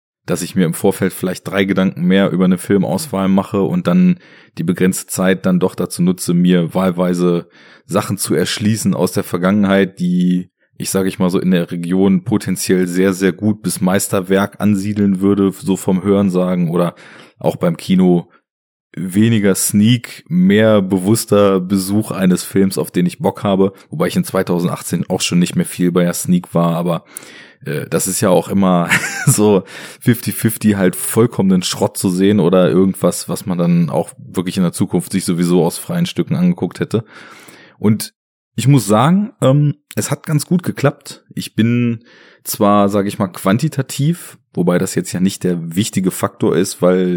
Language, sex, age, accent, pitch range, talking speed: German, male, 30-49, German, 95-130 Hz, 175 wpm